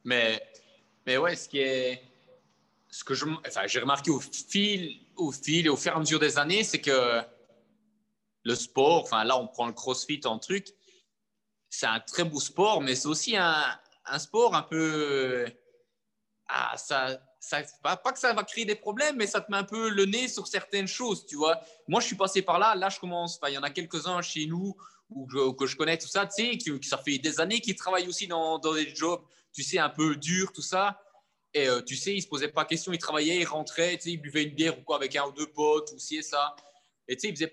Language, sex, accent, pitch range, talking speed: French, male, French, 145-200 Hz, 240 wpm